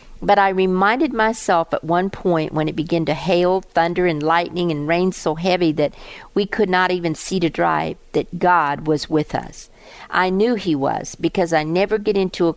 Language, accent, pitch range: English, American, 160-190 Hz